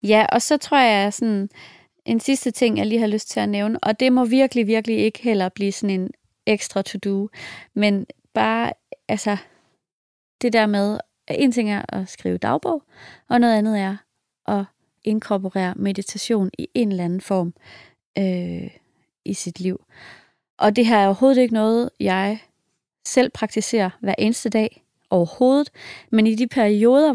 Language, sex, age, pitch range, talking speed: English, female, 30-49, 195-235 Hz, 160 wpm